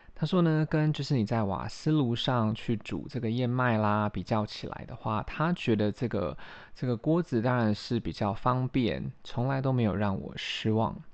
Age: 20-39